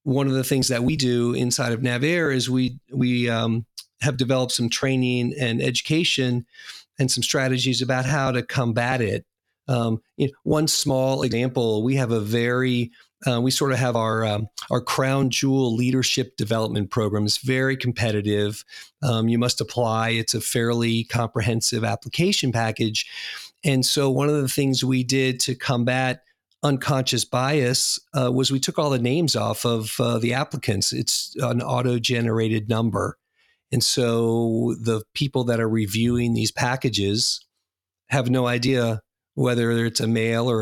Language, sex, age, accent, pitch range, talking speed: English, male, 40-59, American, 115-130 Hz, 160 wpm